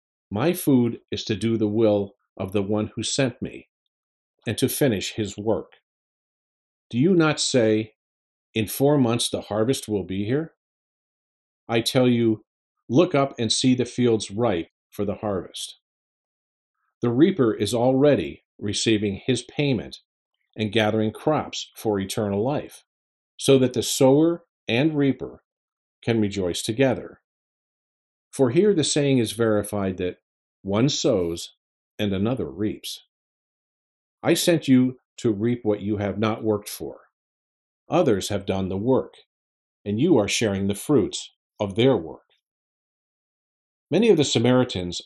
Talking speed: 140 wpm